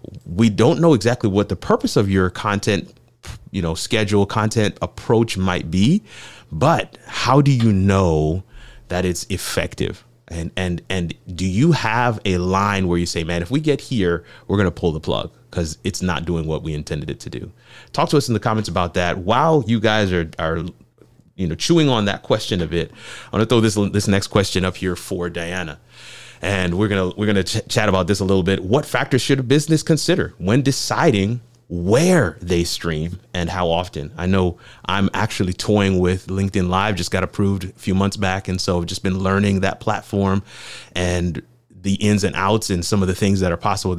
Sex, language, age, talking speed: male, English, 30-49, 210 wpm